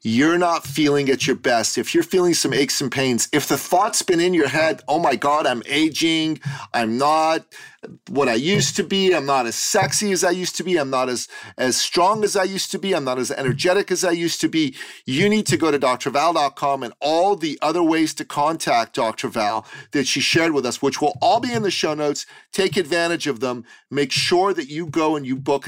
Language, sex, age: English, male, 40-59